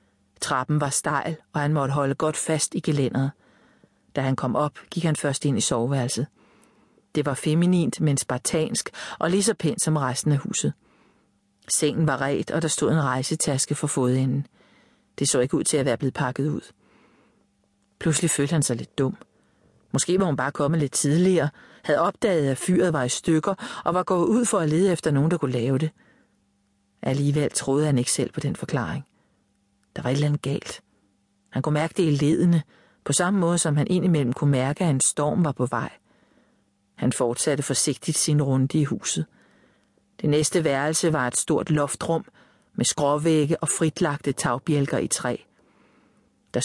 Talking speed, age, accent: 185 wpm, 40-59, Danish